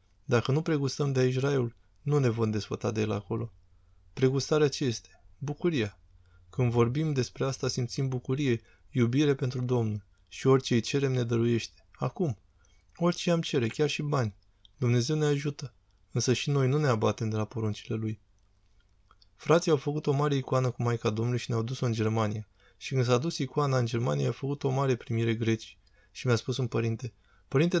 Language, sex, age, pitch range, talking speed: Romanian, male, 20-39, 110-135 Hz, 180 wpm